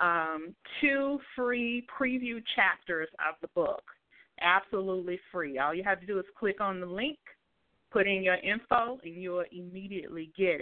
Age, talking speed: 30-49, 165 wpm